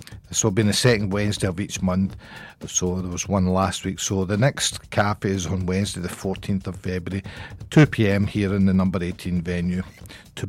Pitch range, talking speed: 95-110 Hz, 195 wpm